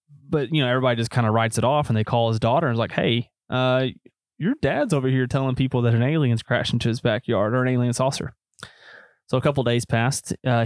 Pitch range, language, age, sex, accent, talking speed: 115-130 Hz, English, 20-39, male, American, 250 wpm